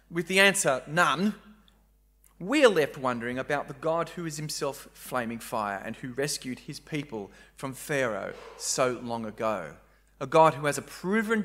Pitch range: 110-180 Hz